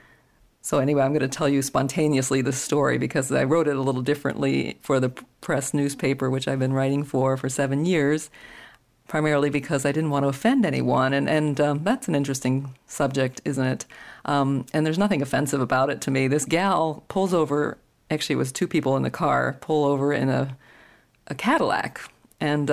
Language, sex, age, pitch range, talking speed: English, female, 50-69, 135-165 Hz, 195 wpm